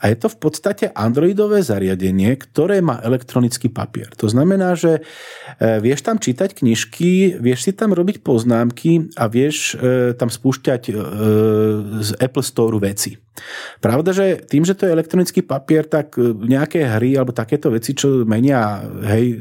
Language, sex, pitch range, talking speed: Slovak, male, 120-175 Hz, 150 wpm